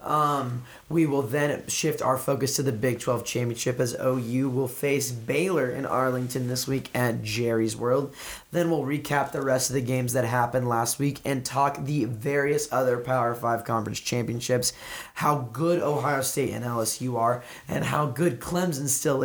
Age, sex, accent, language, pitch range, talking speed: 20-39, male, American, English, 125-150 Hz, 180 wpm